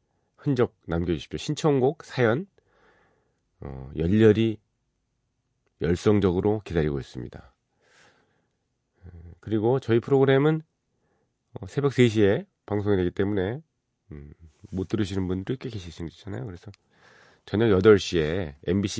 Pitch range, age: 85-120 Hz, 40-59